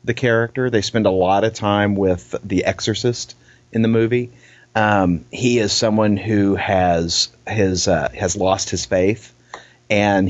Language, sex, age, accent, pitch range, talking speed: English, male, 40-59, American, 95-120 Hz, 155 wpm